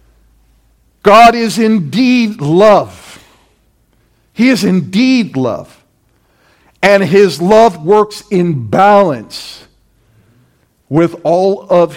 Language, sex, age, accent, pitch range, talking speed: English, male, 50-69, American, 145-200 Hz, 85 wpm